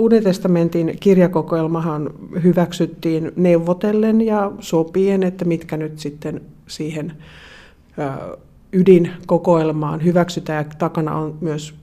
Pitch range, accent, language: 155-180 Hz, native, Finnish